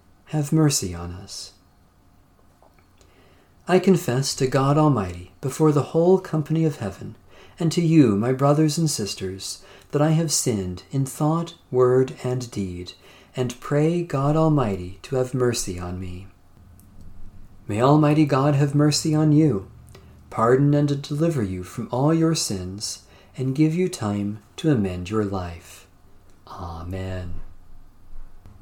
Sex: male